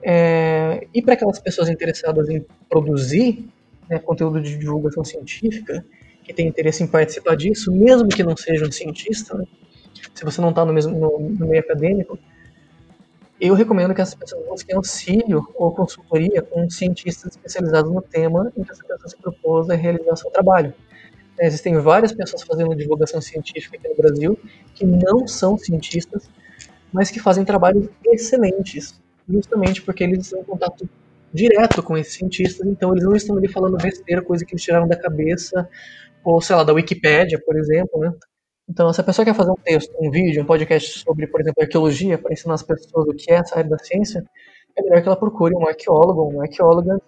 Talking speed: 185 wpm